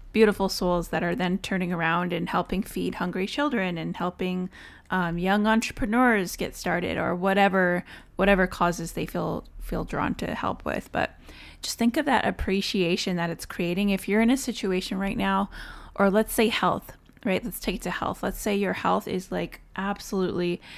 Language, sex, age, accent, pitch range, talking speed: English, female, 20-39, American, 175-205 Hz, 180 wpm